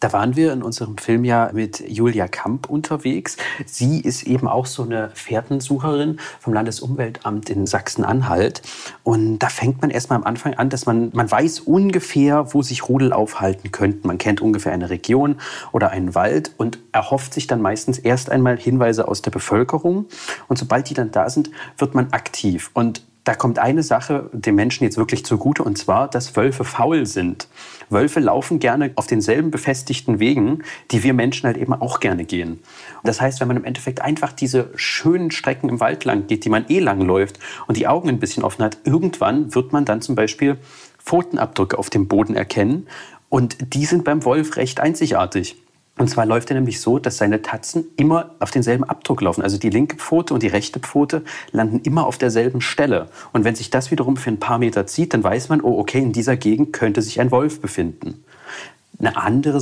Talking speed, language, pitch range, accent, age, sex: 195 wpm, German, 110-145 Hz, German, 40-59, male